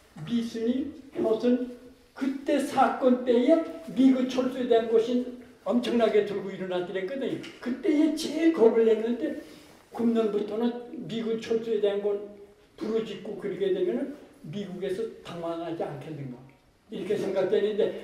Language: Korean